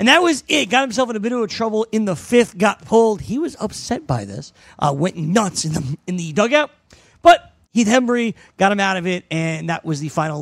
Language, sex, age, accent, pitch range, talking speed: English, male, 40-59, American, 170-235 Hz, 240 wpm